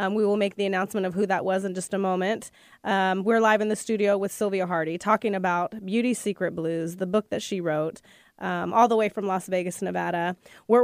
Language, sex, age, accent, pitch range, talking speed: English, female, 20-39, American, 190-225 Hz, 235 wpm